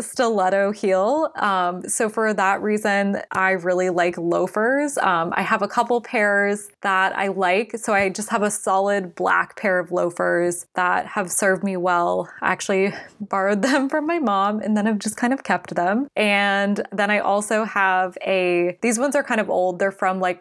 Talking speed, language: 190 wpm, English